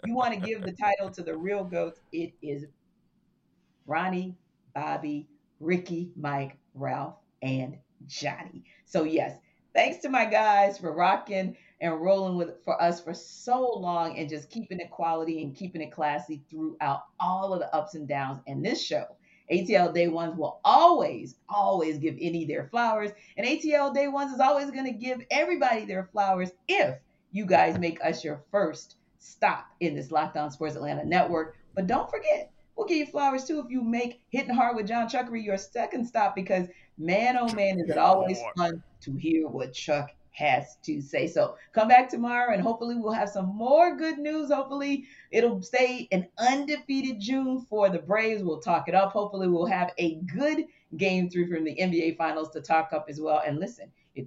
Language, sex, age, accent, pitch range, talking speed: English, female, 40-59, American, 160-235 Hz, 185 wpm